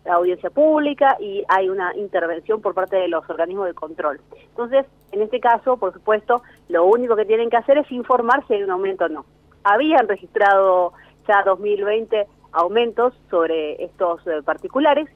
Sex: female